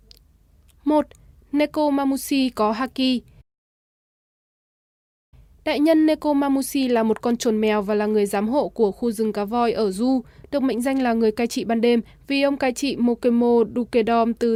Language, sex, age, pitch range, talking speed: Vietnamese, female, 20-39, 220-260 Hz, 170 wpm